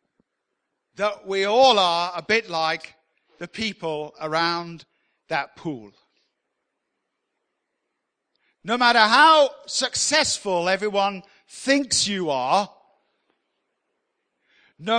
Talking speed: 85 wpm